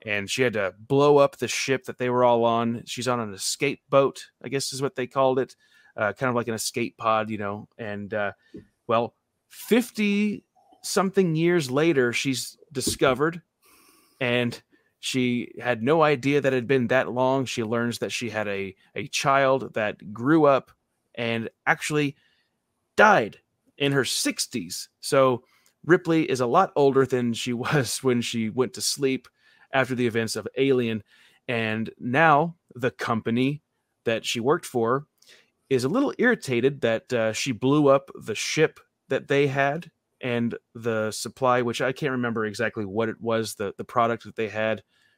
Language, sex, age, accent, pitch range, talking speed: English, male, 30-49, American, 115-140 Hz, 170 wpm